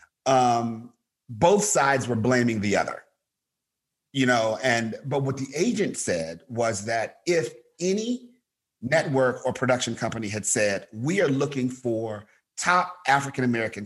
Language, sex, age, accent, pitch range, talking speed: English, male, 40-59, American, 120-155 Hz, 135 wpm